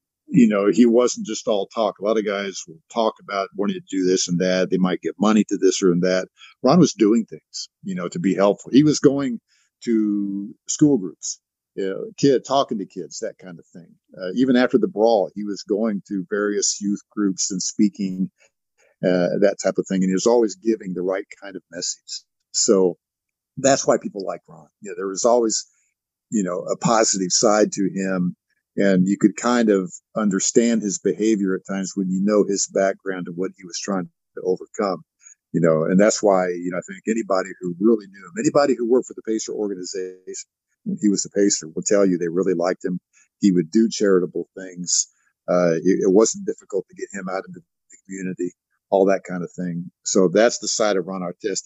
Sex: male